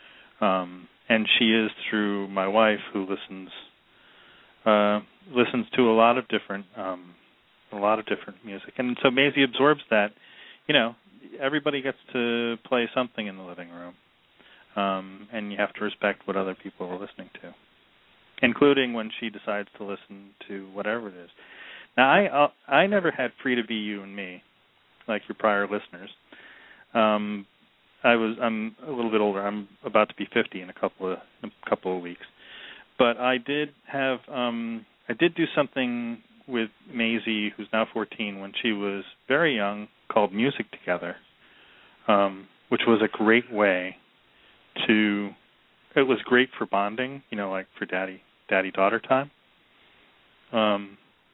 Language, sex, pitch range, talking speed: English, male, 100-120 Hz, 165 wpm